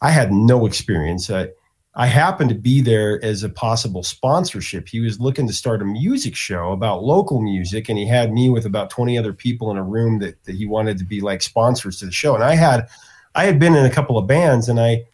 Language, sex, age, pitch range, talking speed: English, male, 30-49, 110-145 Hz, 240 wpm